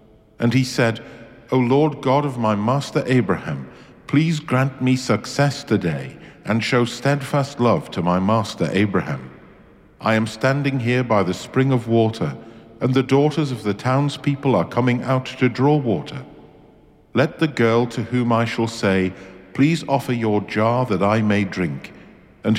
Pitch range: 105-130 Hz